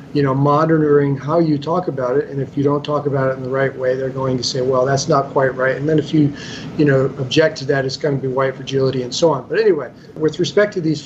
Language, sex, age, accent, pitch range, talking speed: English, male, 40-59, American, 140-165 Hz, 280 wpm